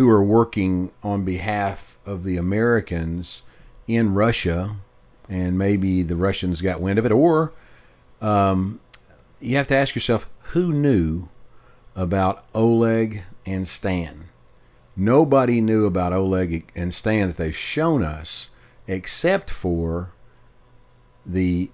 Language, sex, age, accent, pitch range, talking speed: English, male, 50-69, American, 90-125 Hz, 120 wpm